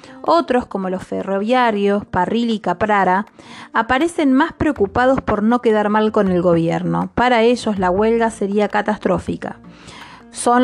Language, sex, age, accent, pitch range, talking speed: Spanish, female, 20-39, Argentinian, 205-250 Hz, 135 wpm